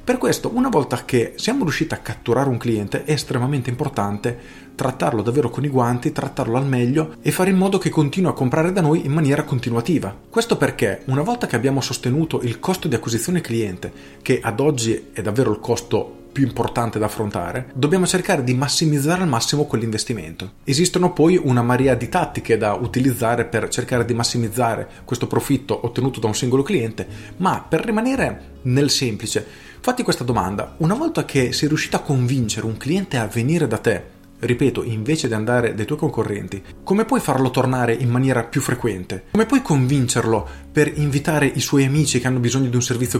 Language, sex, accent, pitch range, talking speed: Italian, male, native, 115-155 Hz, 185 wpm